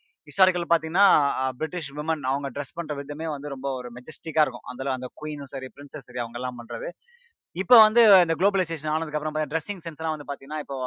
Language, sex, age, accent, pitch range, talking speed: Tamil, male, 20-39, native, 140-180 Hz, 175 wpm